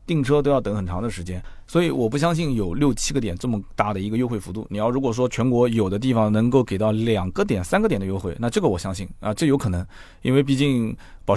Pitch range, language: 100-135 Hz, Chinese